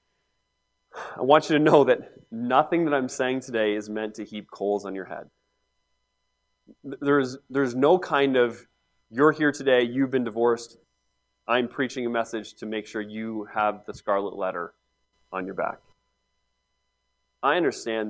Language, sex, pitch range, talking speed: English, male, 115-150 Hz, 155 wpm